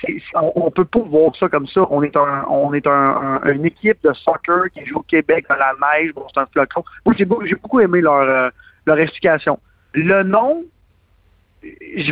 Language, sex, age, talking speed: French, male, 50-69, 210 wpm